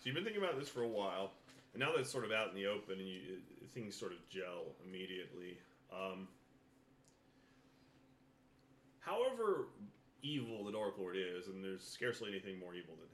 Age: 30-49